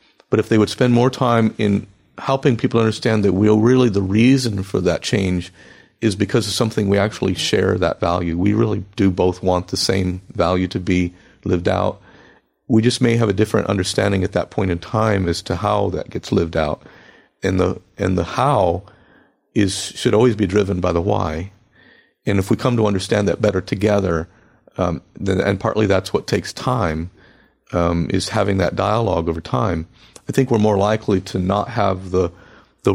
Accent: American